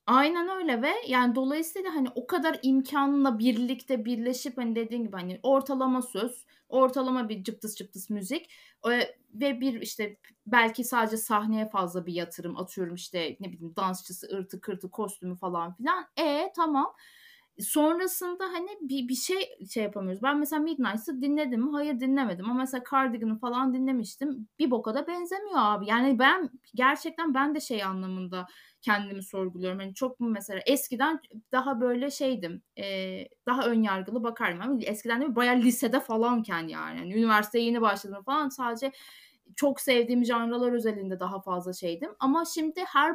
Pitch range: 215-280 Hz